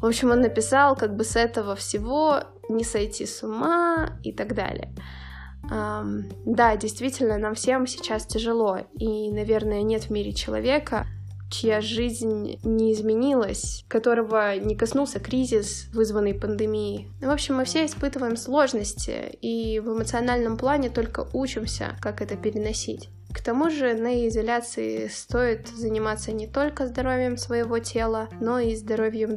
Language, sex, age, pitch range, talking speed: Russian, female, 10-29, 205-250 Hz, 140 wpm